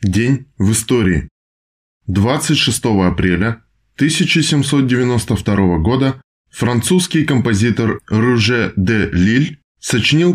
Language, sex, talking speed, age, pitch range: Russian, male, 75 wpm, 20-39, 100-135 Hz